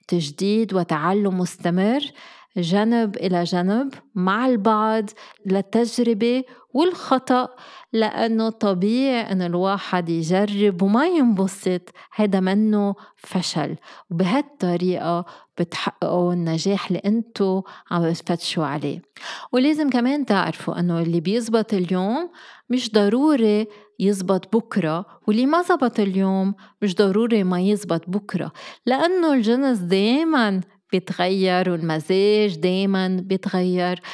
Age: 20-39